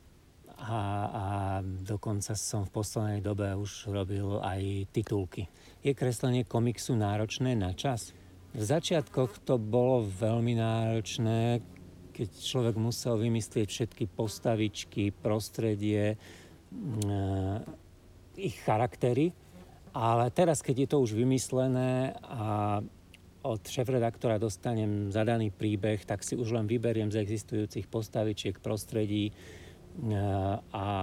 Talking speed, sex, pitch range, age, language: 110 wpm, male, 95-120 Hz, 50-69, Slovak